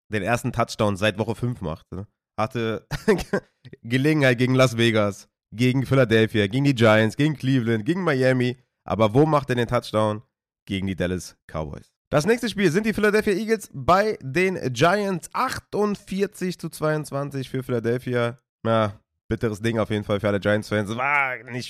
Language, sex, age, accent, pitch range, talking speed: German, male, 20-39, German, 105-130 Hz, 165 wpm